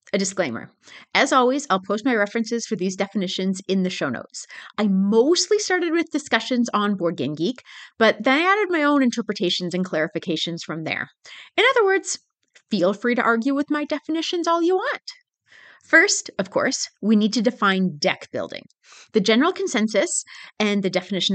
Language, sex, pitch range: English, female, 180-255 Hz